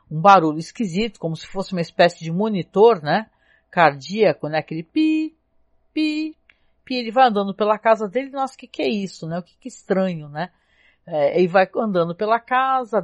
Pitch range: 160-220 Hz